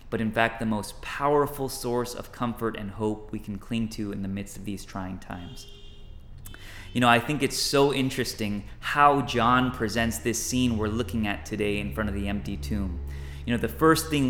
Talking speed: 205 wpm